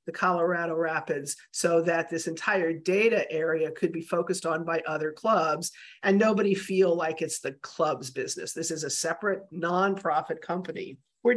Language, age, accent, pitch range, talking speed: English, 50-69, American, 170-220 Hz, 165 wpm